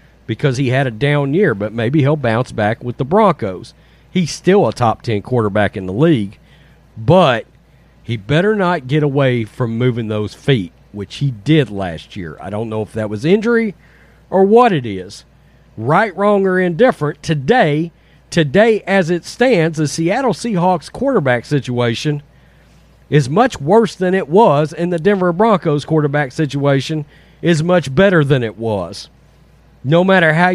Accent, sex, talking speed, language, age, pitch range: American, male, 165 wpm, English, 40-59, 135-190 Hz